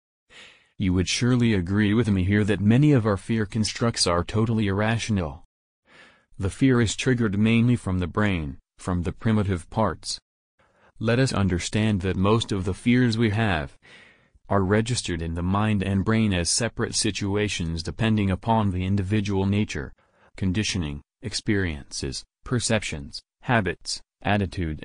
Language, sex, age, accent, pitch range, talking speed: English, male, 40-59, American, 95-115 Hz, 140 wpm